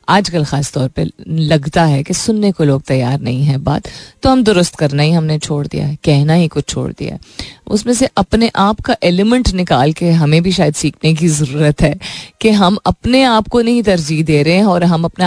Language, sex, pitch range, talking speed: Hindi, female, 145-190 Hz, 220 wpm